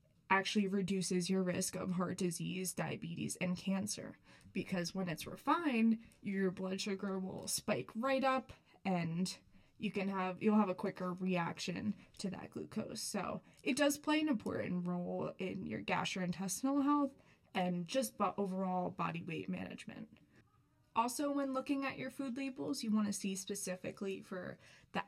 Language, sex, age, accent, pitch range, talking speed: English, female, 20-39, American, 185-225 Hz, 155 wpm